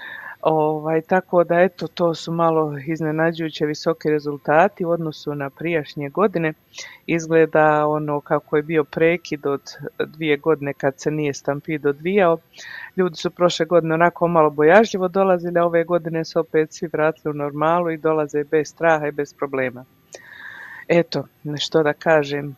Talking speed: 150 wpm